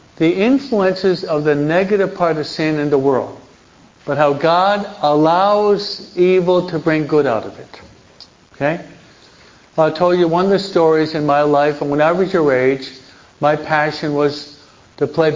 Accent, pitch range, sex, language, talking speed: American, 145-175 Hz, male, English, 170 wpm